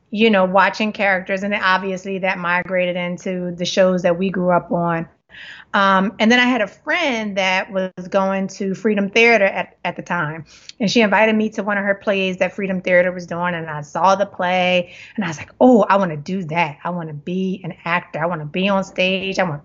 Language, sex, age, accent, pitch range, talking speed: English, female, 30-49, American, 180-225 Hz, 225 wpm